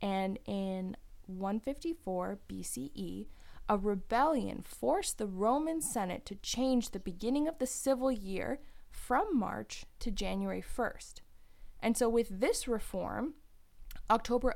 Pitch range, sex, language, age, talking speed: 190-250 Hz, female, English, 20-39, 120 wpm